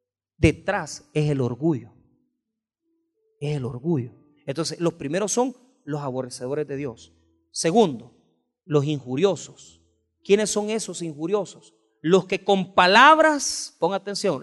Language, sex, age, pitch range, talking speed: Spanish, male, 40-59, 160-260 Hz, 115 wpm